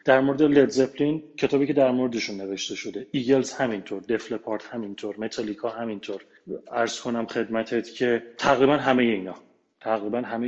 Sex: male